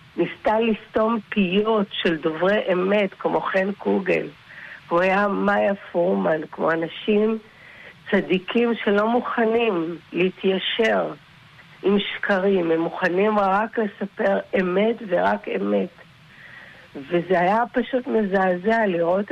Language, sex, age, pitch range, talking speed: Hebrew, female, 60-79, 165-210 Hz, 105 wpm